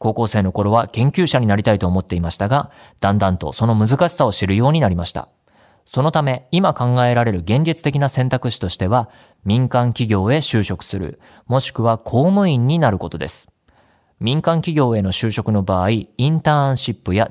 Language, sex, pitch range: Japanese, male, 100-130 Hz